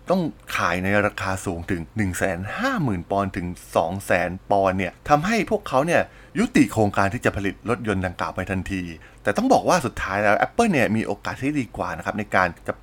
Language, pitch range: Thai, 95-120 Hz